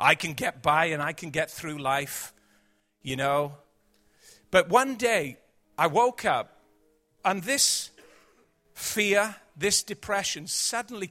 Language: English